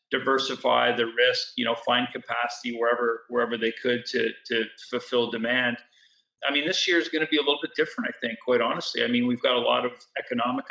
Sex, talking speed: male, 220 wpm